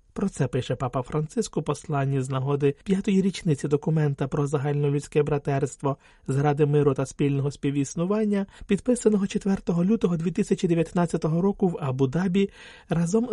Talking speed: 125 wpm